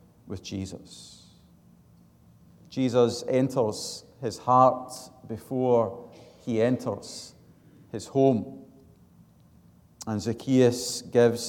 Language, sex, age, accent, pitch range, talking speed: English, male, 50-69, British, 110-130 Hz, 75 wpm